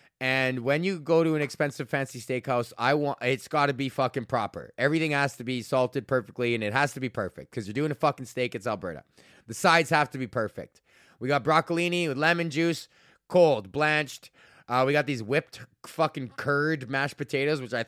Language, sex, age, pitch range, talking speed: English, male, 20-39, 120-150 Hz, 210 wpm